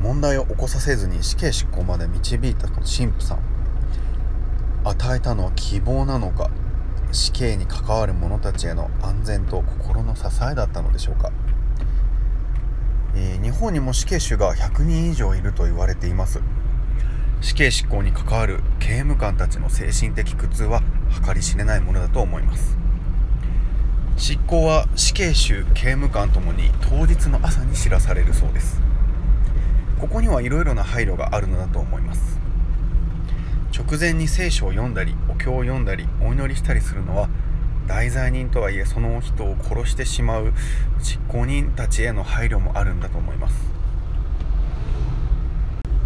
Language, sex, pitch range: Japanese, male, 85-115 Hz